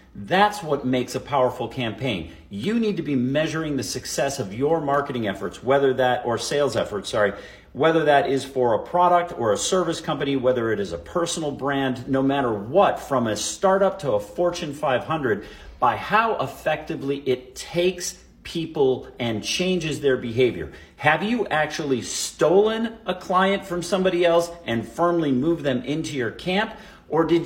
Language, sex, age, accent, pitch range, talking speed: English, male, 50-69, American, 125-170 Hz, 170 wpm